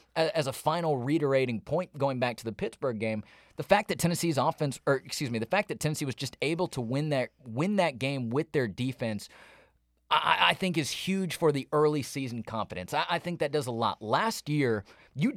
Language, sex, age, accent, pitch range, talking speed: English, male, 30-49, American, 125-160 Hz, 205 wpm